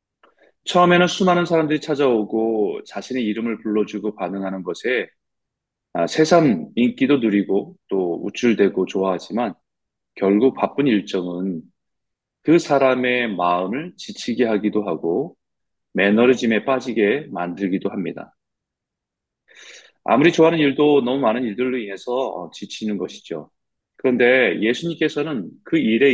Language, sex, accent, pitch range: Korean, male, native, 105-155 Hz